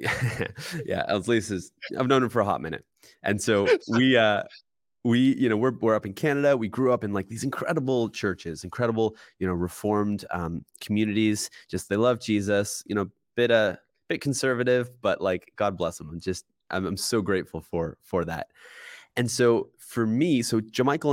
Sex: male